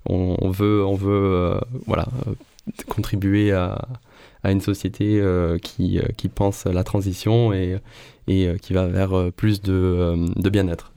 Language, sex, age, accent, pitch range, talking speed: French, male, 20-39, French, 95-115 Hz, 155 wpm